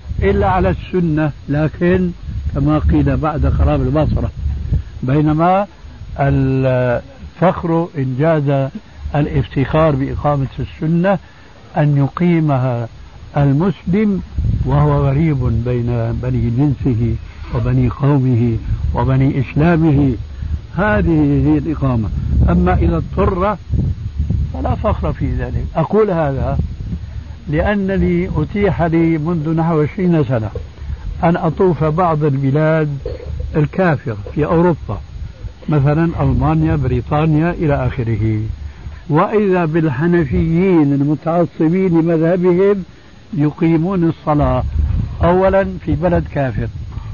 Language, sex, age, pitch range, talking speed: Arabic, male, 60-79, 110-165 Hz, 85 wpm